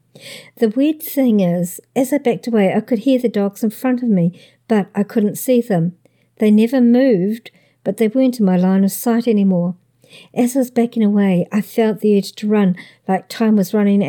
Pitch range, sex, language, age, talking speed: 190-230 Hz, male, English, 60-79, 210 wpm